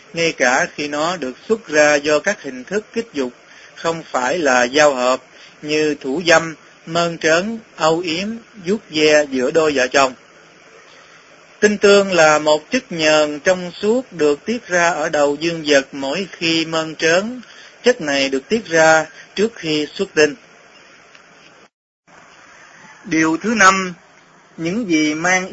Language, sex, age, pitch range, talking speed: Vietnamese, male, 20-39, 145-185 Hz, 155 wpm